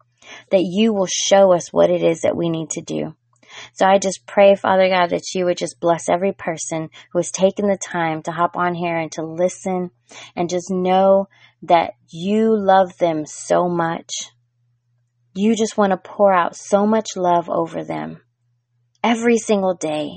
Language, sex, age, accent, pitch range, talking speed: English, female, 20-39, American, 155-205 Hz, 180 wpm